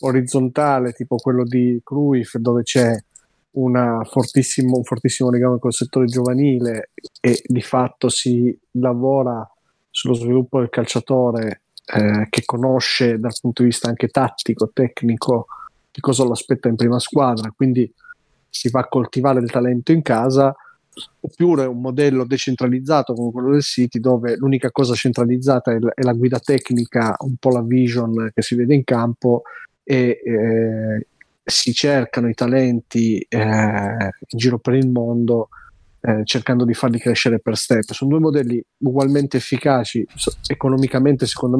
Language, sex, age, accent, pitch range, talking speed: Italian, male, 30-49, native, 115-130 Hz, 150 wpm